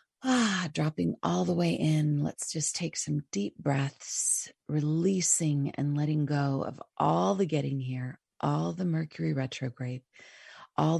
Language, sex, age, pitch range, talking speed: English, female, 40-59, 135-160 Hz, 140 wpm